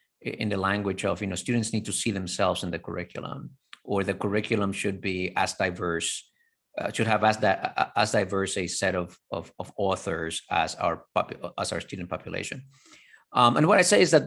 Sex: male